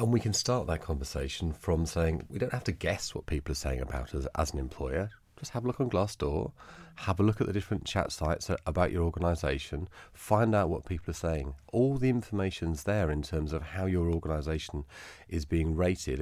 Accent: British